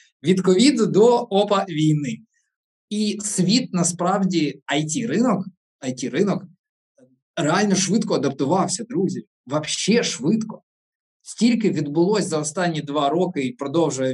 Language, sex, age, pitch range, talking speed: Ukrainian, male, 20-39, 140-200 Hz, 100 wpm